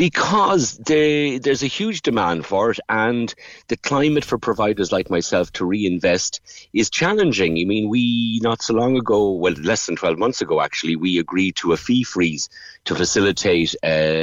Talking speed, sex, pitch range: 170 wpm, male, 85-115 Hz